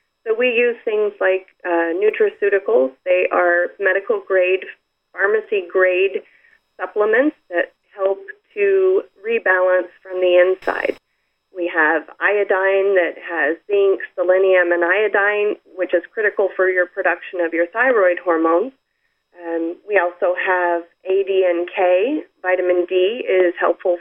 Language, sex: English, female